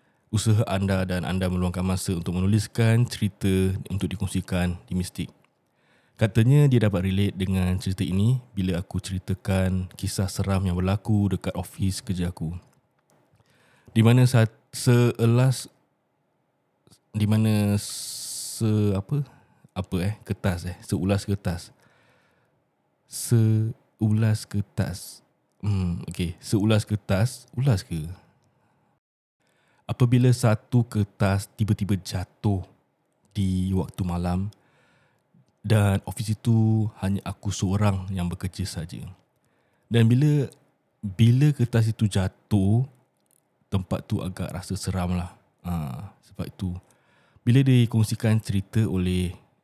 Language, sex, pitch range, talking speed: Malay, male, 95-115 Hz, 105 wpm